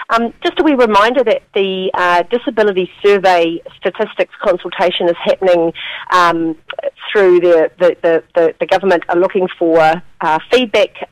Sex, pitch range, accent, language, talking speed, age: female, 165-195 Hz, Australian, English, 130 wpm, 40-59